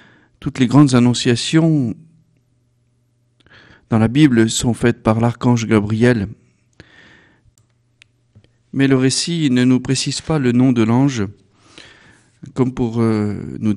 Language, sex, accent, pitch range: French, male, French, 115-140 Hz